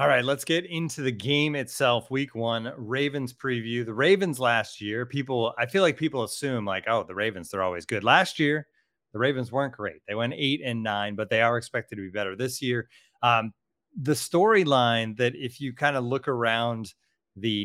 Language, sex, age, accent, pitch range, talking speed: English, male, 30-49, American, 105-135 Hz, 205 wpm